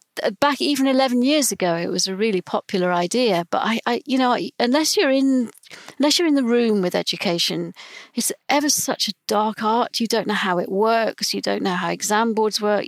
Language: English